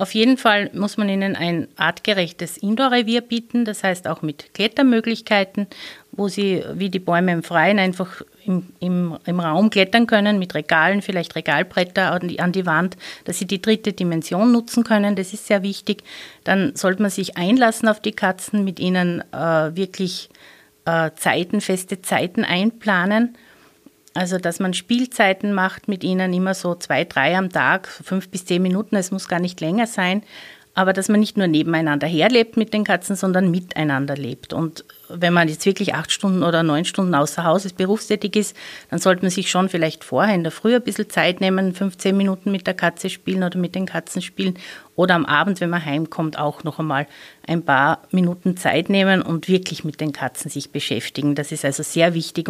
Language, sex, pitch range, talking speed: German, female, 170-205 Hz, 185 wpm